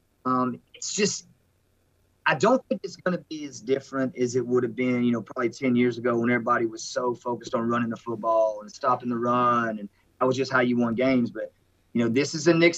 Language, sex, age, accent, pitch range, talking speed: English, male, 30-49, American, 125-160 Hz, 245 wpm